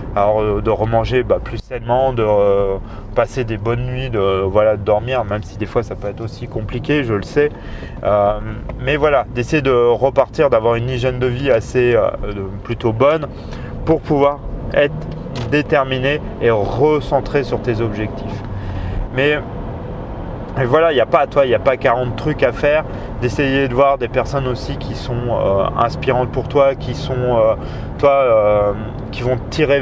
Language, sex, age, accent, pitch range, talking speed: French, male, 30-49, French, 110-135 Hz, 175 wpm